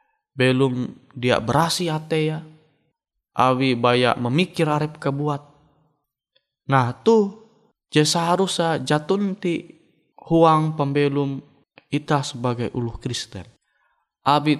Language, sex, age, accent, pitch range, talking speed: Indonesian, male, 20-39, native, 140-170 Hz, 85 wpm